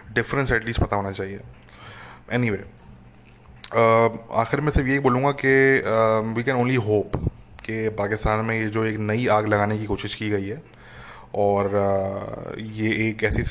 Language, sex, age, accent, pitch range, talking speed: English, male, 20-39, Indian, 110-135 Hz, 95 wpm